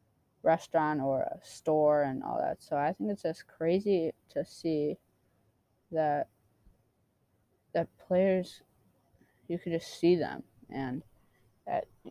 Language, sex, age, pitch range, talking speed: English, female, 20-39, 135-170 Hz, 125 wpm